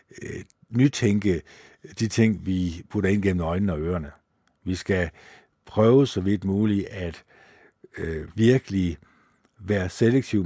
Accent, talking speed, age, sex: native, 120 wpm, 60-79, male